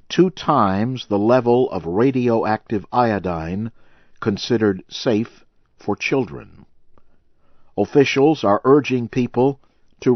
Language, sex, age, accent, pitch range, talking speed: English, male, 50-69, American, 100-125 Hz, 95 wpm